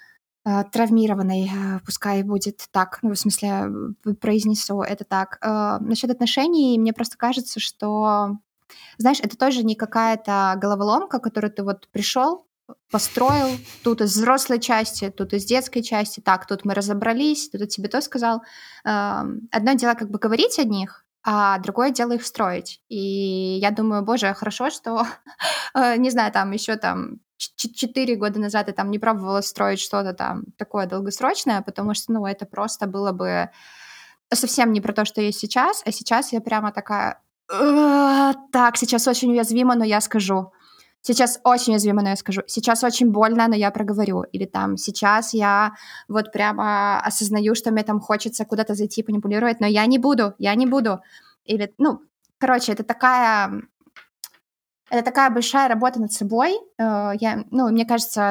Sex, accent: female, native